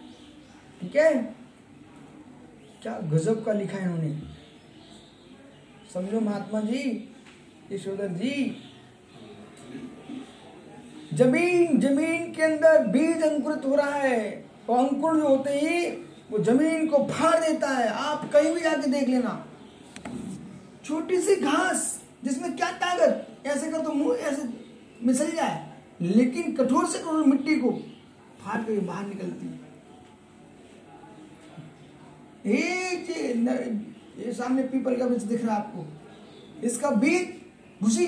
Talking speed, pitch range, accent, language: 125 wpm, 225-295 Hz, native, Hindi